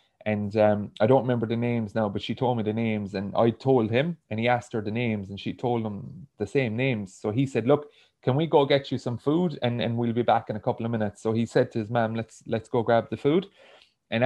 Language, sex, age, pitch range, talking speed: English, male, 30-49, 105-125 Hz, 275 wpm